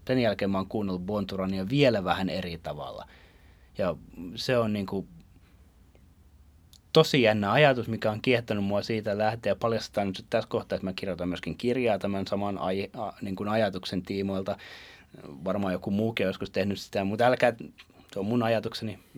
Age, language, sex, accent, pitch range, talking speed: 30-49, Finnish, male, native, 90-115 Hz, 170 wpm